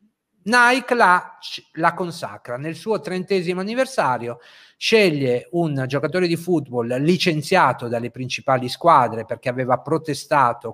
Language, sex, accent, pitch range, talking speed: Italian, male, native, 125-180 Hz, 110 wpm